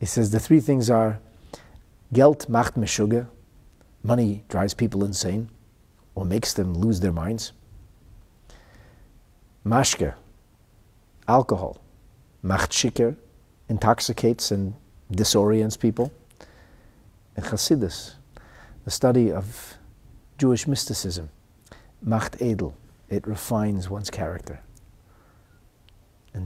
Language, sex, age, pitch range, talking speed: English, male, 50-69, 95-120 Hz, 90 wpm